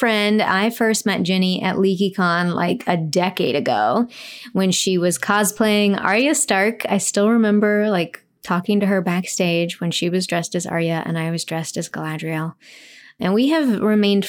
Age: 20-39